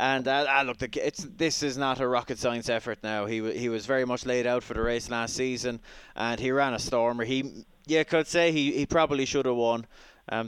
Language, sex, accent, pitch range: English, male, Irish, 115-130 Hz